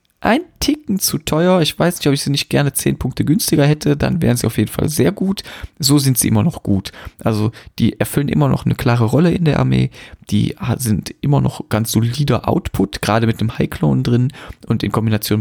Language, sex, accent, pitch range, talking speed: German, male, German, 110-145 Hz, 220 wpm